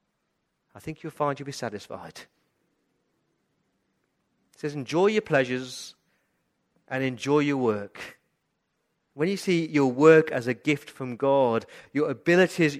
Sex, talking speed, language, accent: male, 130 wpm, English, British